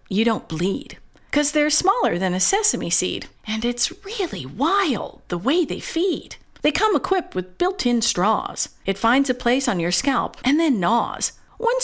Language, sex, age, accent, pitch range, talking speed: English, female, 50-69, American, 220-315 Hz, 175 wpm